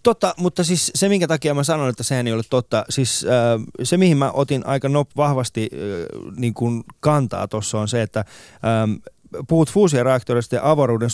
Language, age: Finnish, 20-39